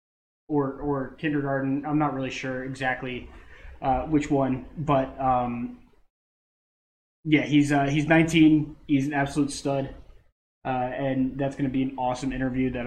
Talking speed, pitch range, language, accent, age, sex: 145 wpm, 130-150 Hz, English, American, 20-39, male